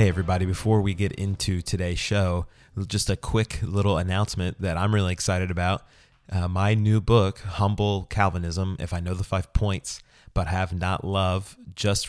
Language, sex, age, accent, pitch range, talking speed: English, male, 30-49, American, 90-100 Hz, 175 wpm